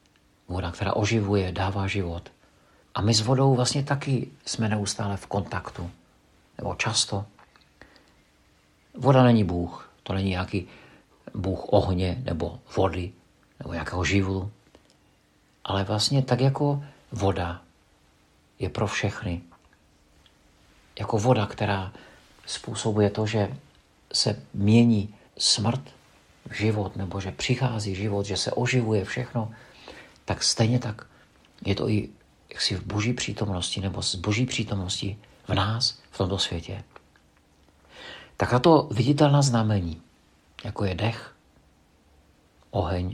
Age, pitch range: 50-69, 90-115 Hz